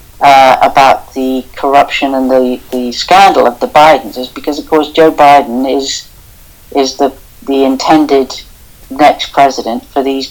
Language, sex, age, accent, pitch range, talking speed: English, female, 60-79, British, 130-160 Hz, 150 wpm